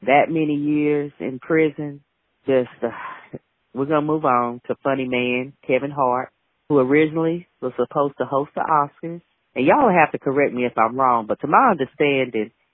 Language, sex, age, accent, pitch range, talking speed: English, female, 40-59, American, 130-165 Hz, 180 wpm